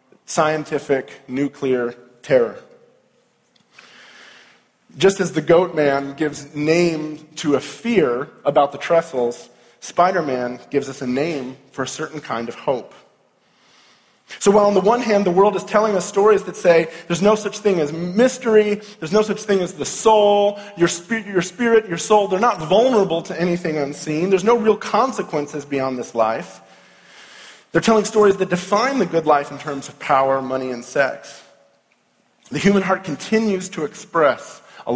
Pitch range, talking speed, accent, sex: 140-200 Hz, 160 wpm, American, male